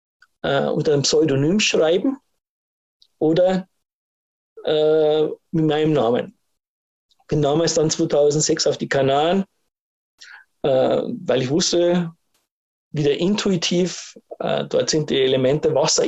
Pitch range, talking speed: 145-185 Hz, 95 wpm